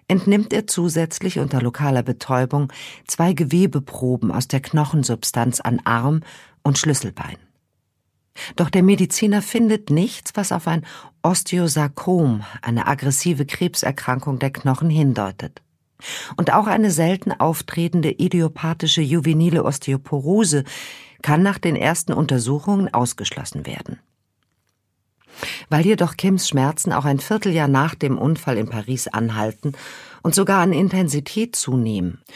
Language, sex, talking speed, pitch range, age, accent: German, female, 115 wpm, 130-180 Hz, 50-69, German